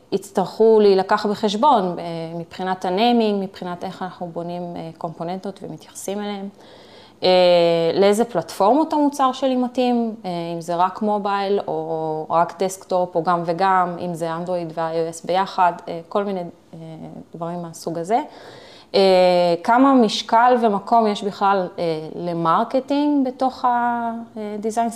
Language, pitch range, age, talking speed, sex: Hebrew, 170-225 Hz, 20-39, 110 wpm, female